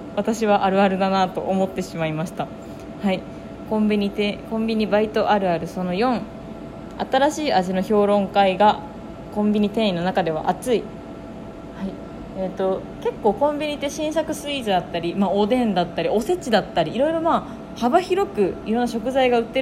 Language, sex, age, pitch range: Japanese, female, 20-39, 195-275 Hz